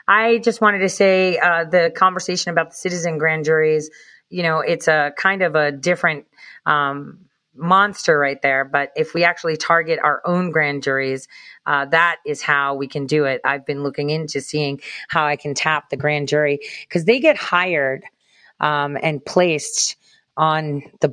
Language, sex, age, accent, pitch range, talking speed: English, female, 30-49, American, 145-180 Hz, 180 wpm